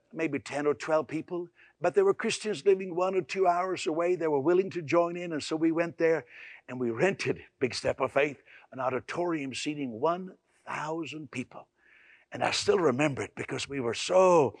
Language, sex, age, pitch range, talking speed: English, male, 60-79, 140-185 Hz, 195 wpm